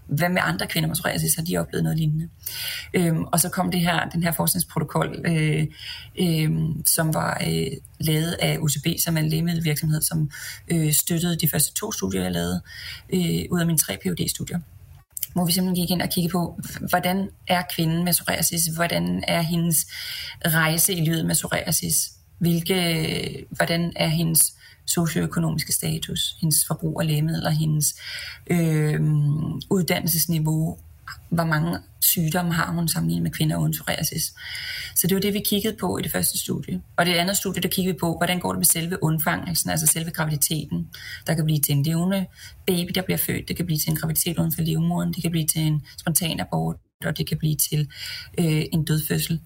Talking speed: 185 wpm